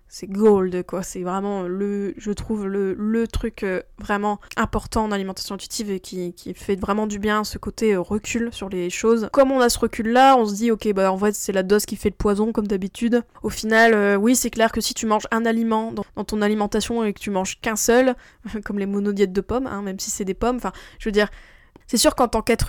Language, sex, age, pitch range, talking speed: French, female, 20-39, 200-230 Hz, 245 wpm